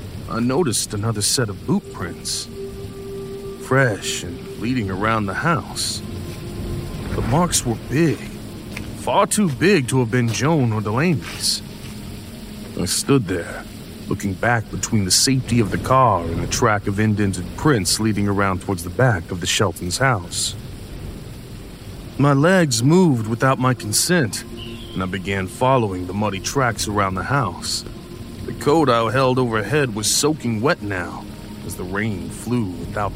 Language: English